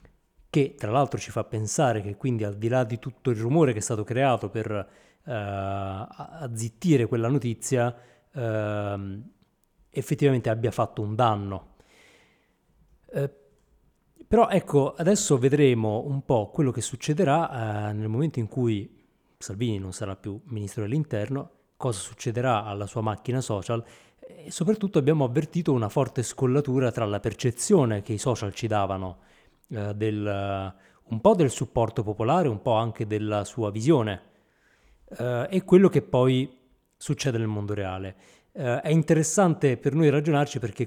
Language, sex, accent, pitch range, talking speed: Italian, male, native, 105-140 Hz, 145 wpm